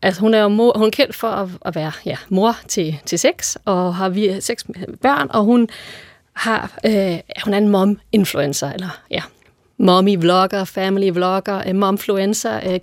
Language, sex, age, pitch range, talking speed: Danish, female, 30-49, 185-220 Hz, 160 wpm